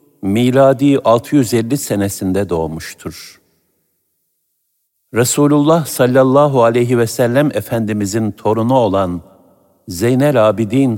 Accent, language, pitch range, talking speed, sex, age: native, Turkish, 95-130 Hz, 75 wpm, male, 60-79